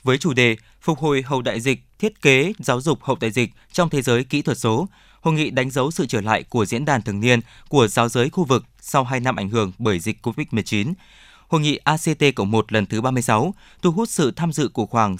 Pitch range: 115-150 Hz